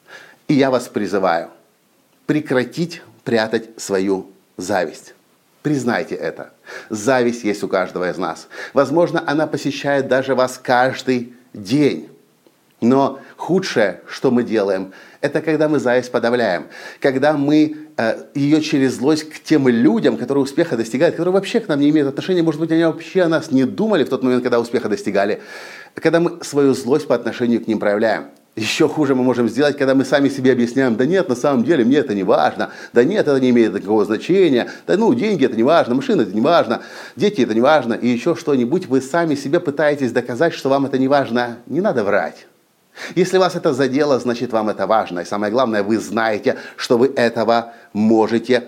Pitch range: 120-150 Hz